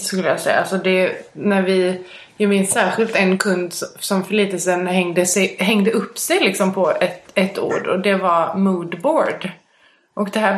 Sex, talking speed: female, 175 wpm